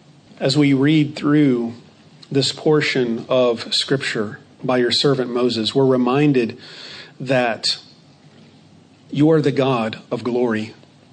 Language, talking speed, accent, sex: English, 115 wpm, American, male